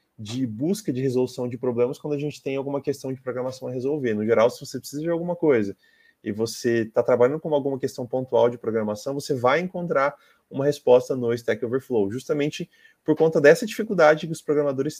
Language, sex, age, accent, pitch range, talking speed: Portuguese, male, 20-39, Brazilian, 125-170 Hz, 200 wpm